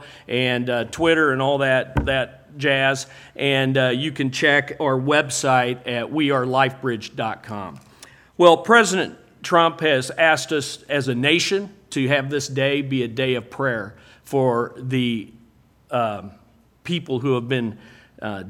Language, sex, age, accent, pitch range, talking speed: English, male, 50-69, American, 120-145 Hz, 140 wpm